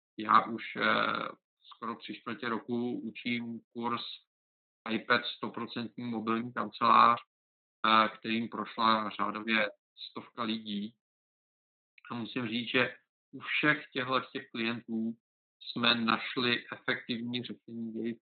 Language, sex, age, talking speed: Czech, male, 50-69, 100 wpm